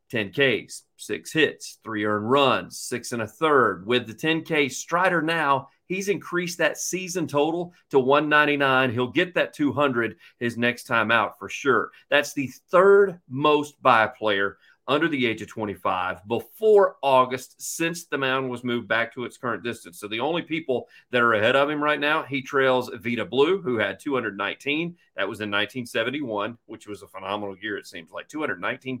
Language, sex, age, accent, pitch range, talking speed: English, male, 40-59, American, 120-165 Hz, 180 wpm